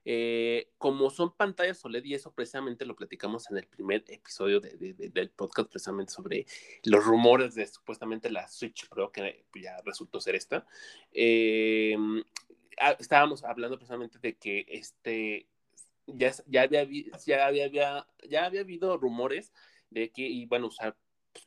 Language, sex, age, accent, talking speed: Spanish, male, 30-49, Mexican, 160 wpm